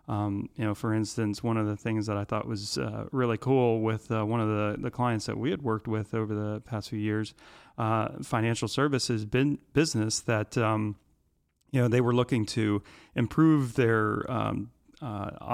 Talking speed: 195 wpm